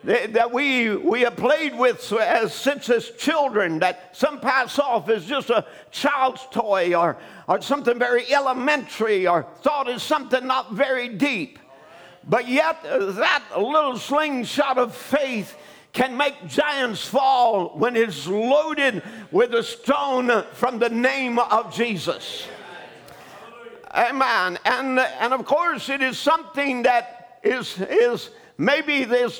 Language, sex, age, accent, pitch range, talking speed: English, male, 50-69, American, 225-275 Hz, 135 wpm